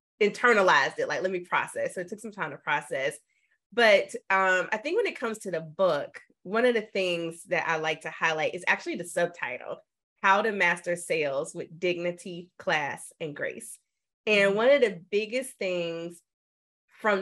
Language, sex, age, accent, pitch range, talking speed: English, female, 30-49, American, 180-275 Hz, 180 wpm